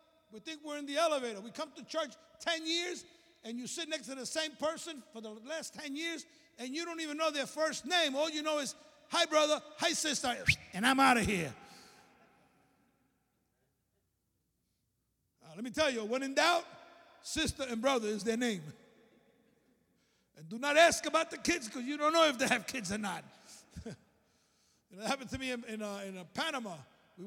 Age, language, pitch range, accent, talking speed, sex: 50-69, English, 185-300 Hz, American, 195 wpm, male